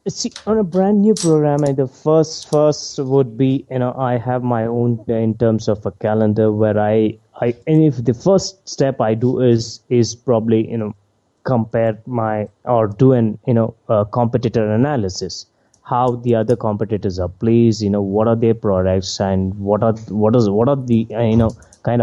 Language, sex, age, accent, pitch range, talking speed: English, male, 20-39, Indian, 110-135 Hz, 195 wpm